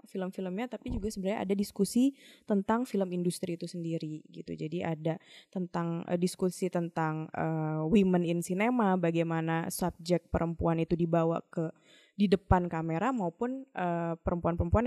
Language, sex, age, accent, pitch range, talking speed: Indonesian, female, 20-39, native, 175-235 Hz, 125 wpm